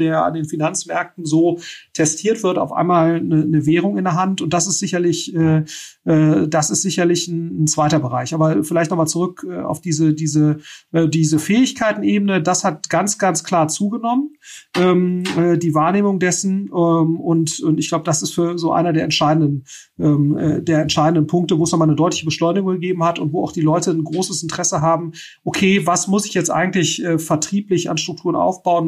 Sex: male